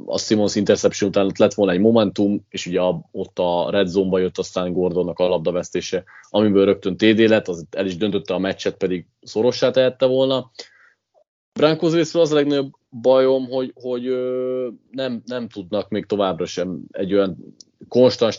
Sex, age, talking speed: male, 30-49, 165 wpm